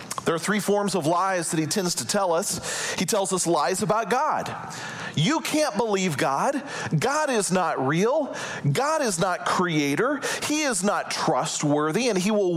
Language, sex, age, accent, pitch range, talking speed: English, male, 40-59, American, 165-225 Hz, 175 wpm